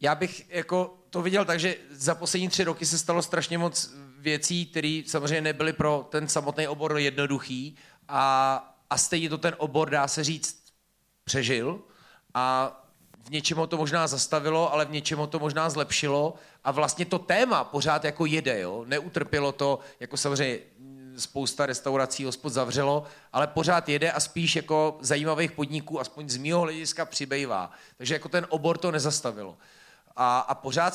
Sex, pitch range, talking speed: male, 135-160 Hz, 165 wpm